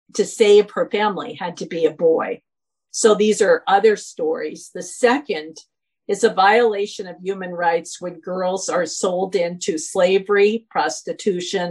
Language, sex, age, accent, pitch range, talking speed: English, female, 50-69, American, 175-225 Hz, 150 wpm